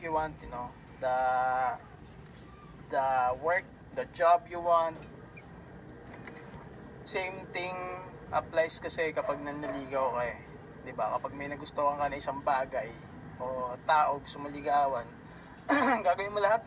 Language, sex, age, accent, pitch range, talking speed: Filipino, male, 20-39, native, 140-180 Hz, 120 wpm